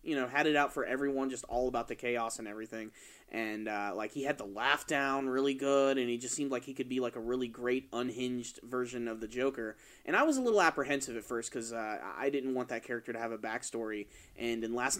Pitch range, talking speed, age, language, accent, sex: 115-140 Hz, 250 wpm, 20-39, English, American, male